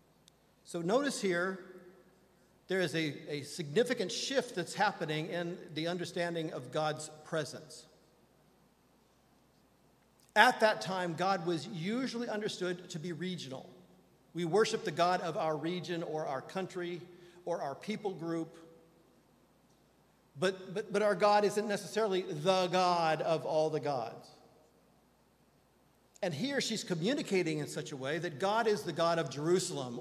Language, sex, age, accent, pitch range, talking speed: English, male, 50-69, American, 160-200 Hz, 140 wpm